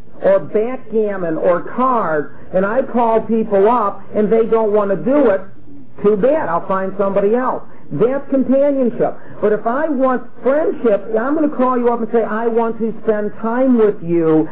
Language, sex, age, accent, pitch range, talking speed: English, male, 50-69, American, 190-235 Hz, 180 wpm